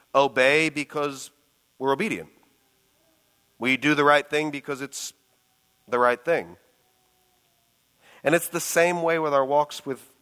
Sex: male